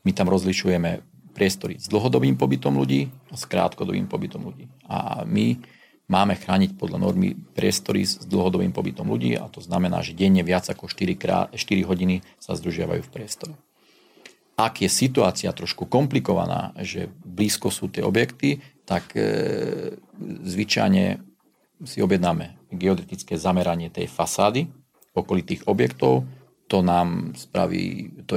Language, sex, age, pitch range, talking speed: Slovak, male, 40-59, 85-100 Hz, 130 wpm